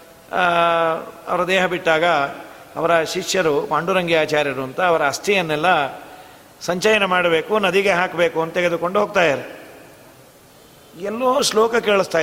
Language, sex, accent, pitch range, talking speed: Kannada, male, native, 160-195 Hz, 105 wpm